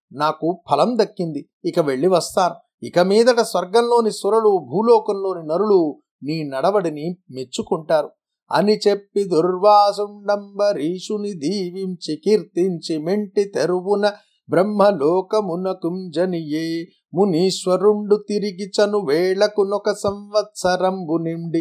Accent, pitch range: native, 170-205 Hz